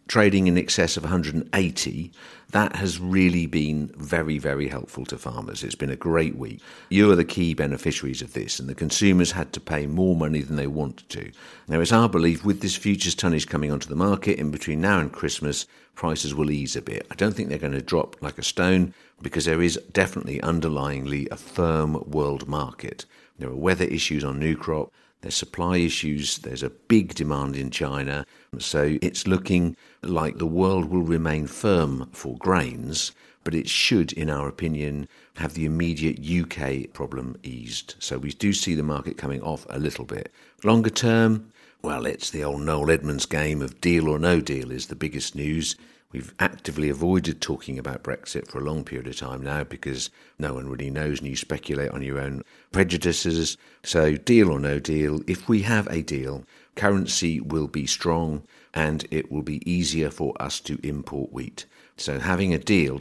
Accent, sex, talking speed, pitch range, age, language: British, male, 190 wpm, 70-85 Hz, 50-69, English